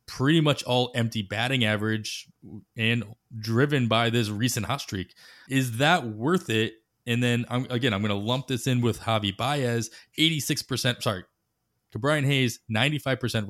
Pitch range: 105-125 Hz